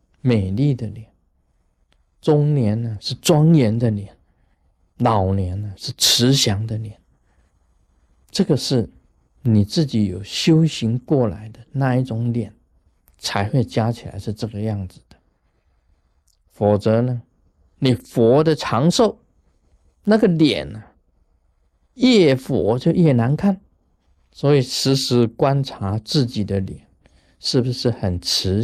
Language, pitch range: Chinese, 90-130 Hz